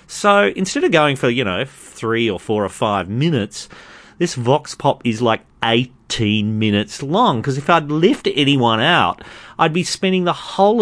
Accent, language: Australian, English